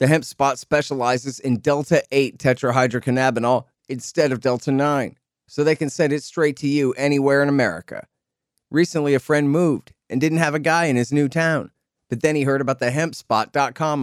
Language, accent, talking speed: English, American, 175 wpm